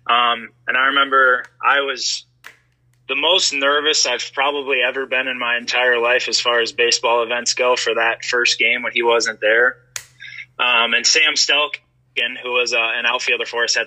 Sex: male